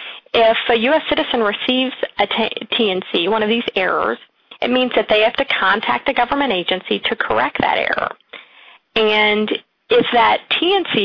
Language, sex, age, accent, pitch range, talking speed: English, female, 40-59, American, 220-285 Hz, 165 wpm